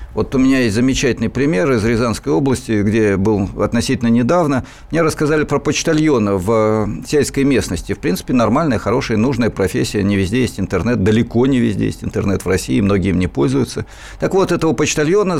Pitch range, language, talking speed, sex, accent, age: 105-140 Hz, Russian, 175 wpm, male, native, 50-69